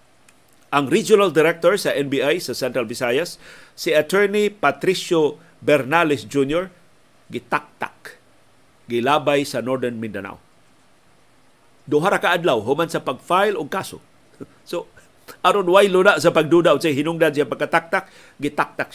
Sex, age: male, 50-69